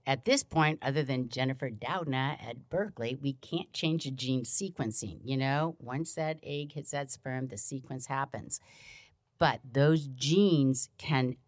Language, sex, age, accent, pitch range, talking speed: English, female, 50-69, American, 130-160 Hz, 155 wpm